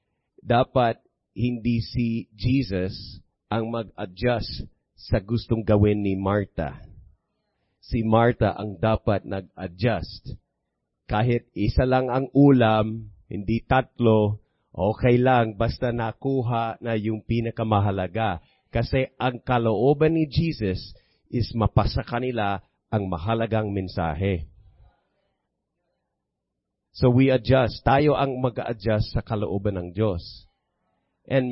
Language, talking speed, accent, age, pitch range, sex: English, 100 wpm, Filipino, 40-59, 105-135 Hz, male